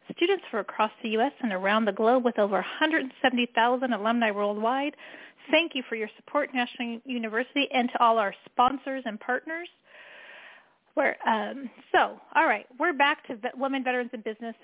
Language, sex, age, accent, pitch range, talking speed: English, female, 40-59, American, 230-275 Hz, 170 wpm